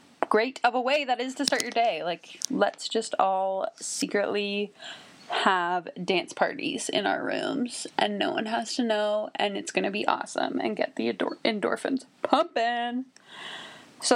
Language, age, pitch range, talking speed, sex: English, 20-39, 180-245 Hz, 165 wpm, female